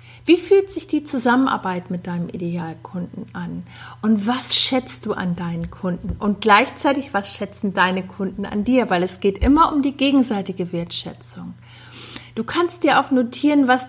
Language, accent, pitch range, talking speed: German, German, 190-280 Hz, 165 wpm